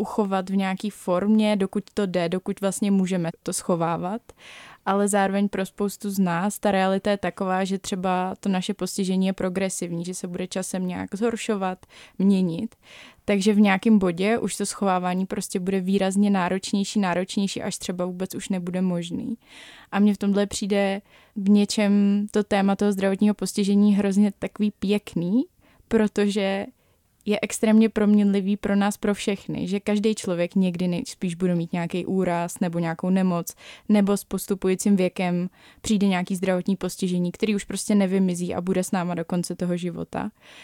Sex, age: female, 20-39